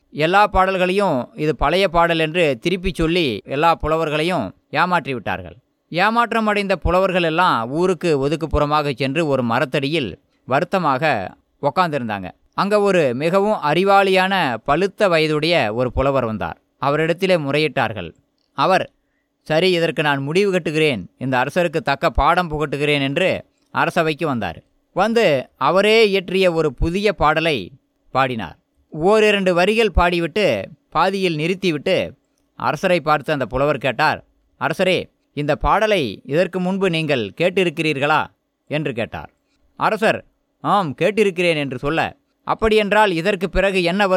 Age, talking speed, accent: 20-39, 110 wpm, native